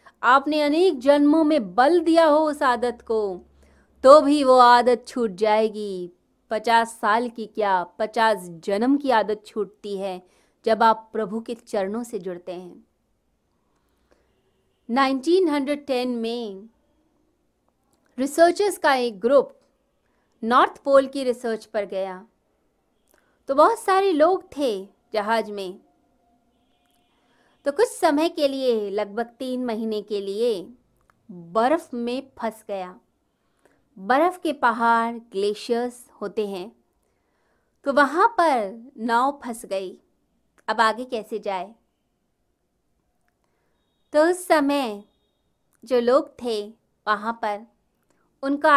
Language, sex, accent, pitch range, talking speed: Hindi, female, native, 210-285 Hz, 115 wpm